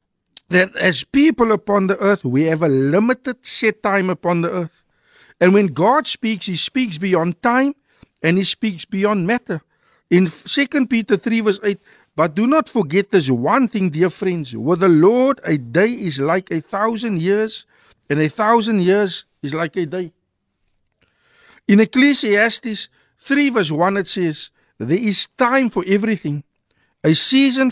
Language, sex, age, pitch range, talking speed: Dutch, male, 60-79, 180-230 Hz, 160 wpm